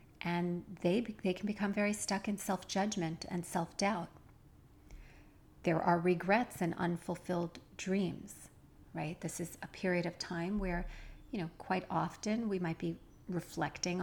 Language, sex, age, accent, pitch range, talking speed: English, female, 40-59, American, 165-200 Hz, 140 wpm